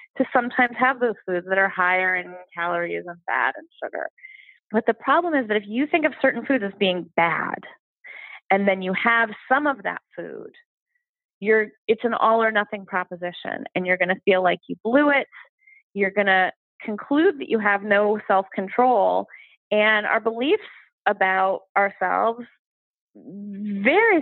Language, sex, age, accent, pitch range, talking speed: English, female, 30-49, American, 190-255 Hz, 170 wpm